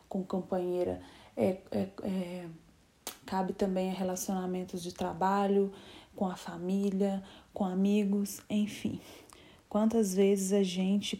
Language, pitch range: Portuguese, 195-235 Hz